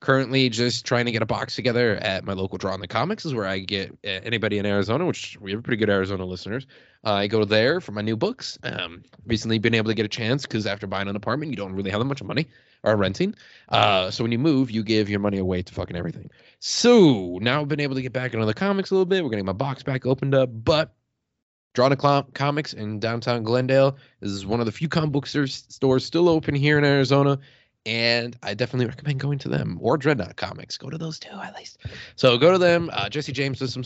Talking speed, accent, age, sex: 250 wpm, American, 20-39, male